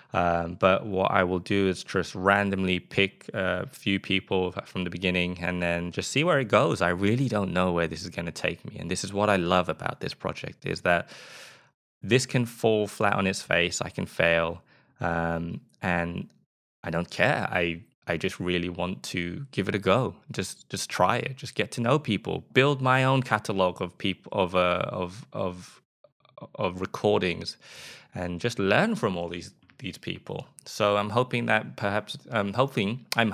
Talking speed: 195 wpm